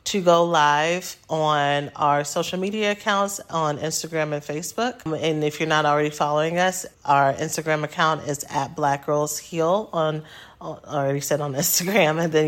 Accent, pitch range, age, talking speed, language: American, 150-180 Hz, 30-49, 170 wpm, English